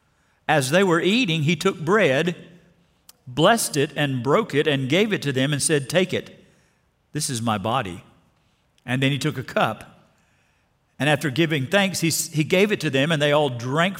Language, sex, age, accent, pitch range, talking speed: English, male, 50-69, American, 125-170 Hz, 195 wpm